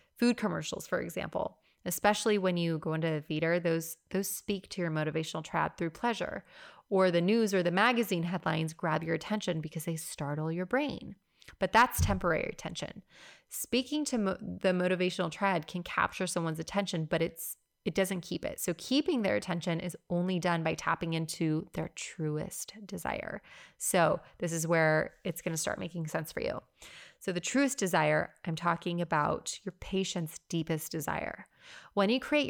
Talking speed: 170 wpm